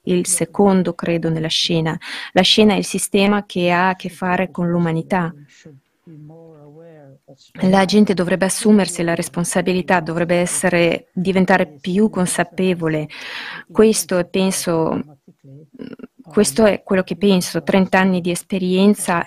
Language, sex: Italian, female